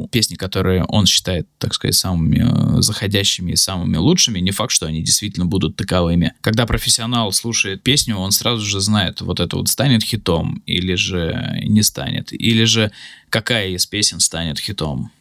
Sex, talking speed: male, 165 wpm